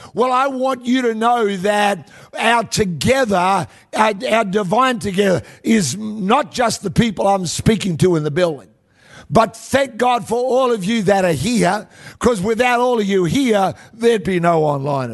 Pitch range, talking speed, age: 180-250 Hz, 175 wpm, 50-69